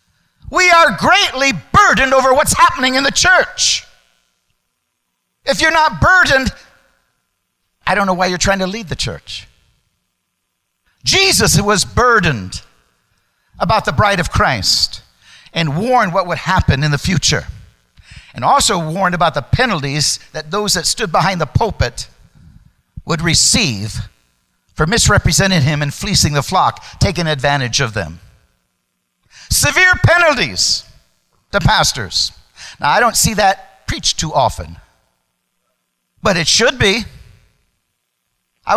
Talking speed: 130 wpm